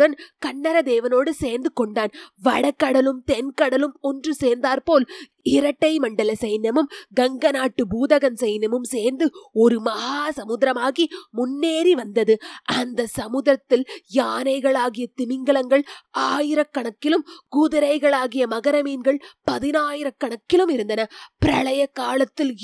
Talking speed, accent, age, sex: 85 wpm, native, 20-39, female